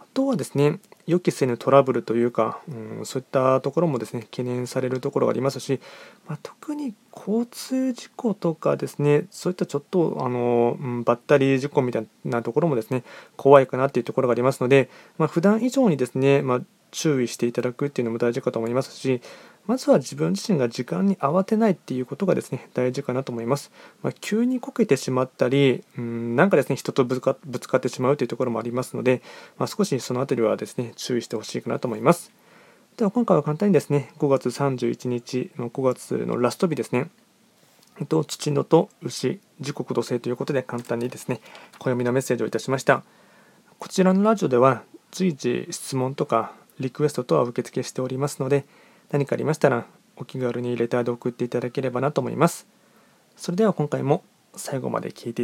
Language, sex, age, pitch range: Japanese, male, 20-39, 125-170 Hz